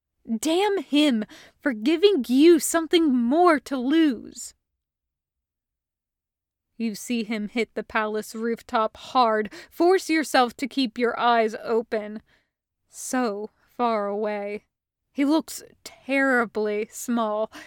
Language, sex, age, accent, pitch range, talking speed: English, female, 20-39, American, 235-315 Hz, 105 wpm